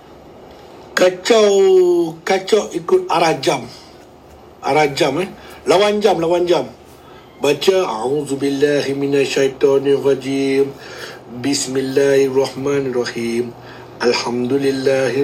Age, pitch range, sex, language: 60-79, 125-155 Hz, male, Malay